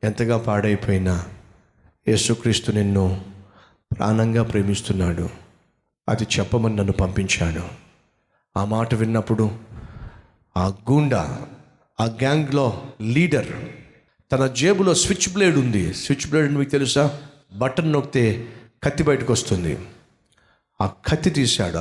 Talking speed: 95 wpm